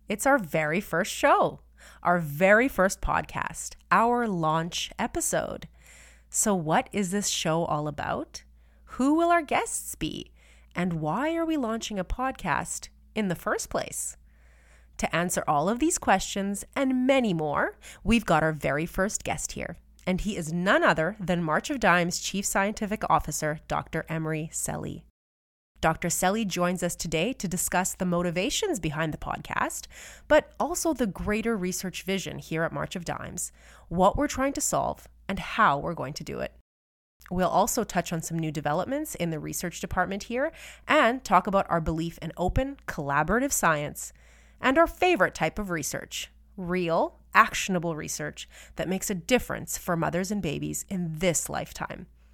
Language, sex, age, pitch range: English, female, 30-49, 155-215 Hz